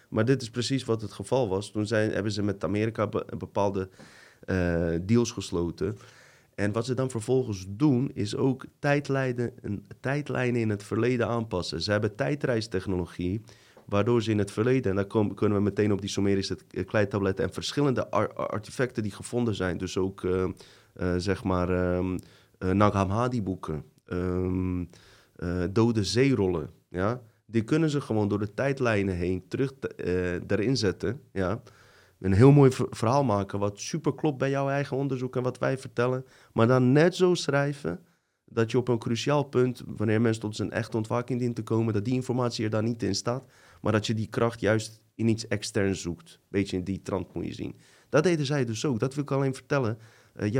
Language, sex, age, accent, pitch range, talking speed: Dutch, male, 30-49, Dutch, 100-125 Hz, 185 wpm